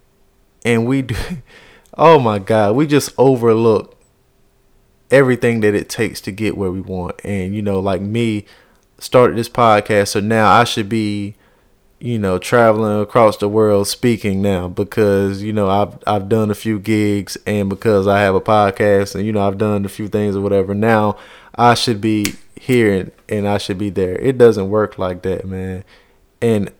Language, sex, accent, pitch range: English, male, American, 100-130 Hz